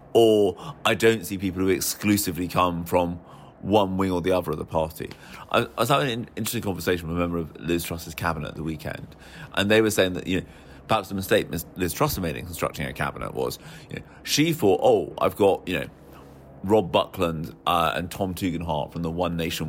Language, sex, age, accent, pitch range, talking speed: English, male, 30-49, British, 85-105 Hz, 215 wpm